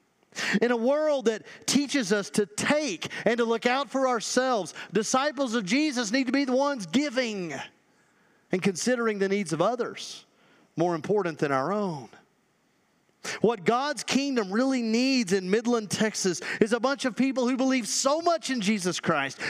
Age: 40-59